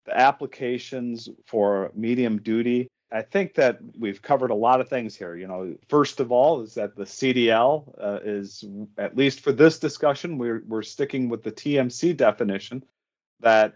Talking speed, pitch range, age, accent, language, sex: 170 wpm, 110-145 Hz, 40-59, American, English, male